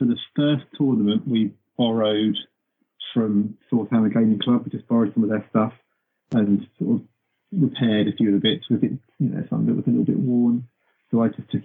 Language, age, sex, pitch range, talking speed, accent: English, 40-59, male, 105-130 Hz, 210 wpm, British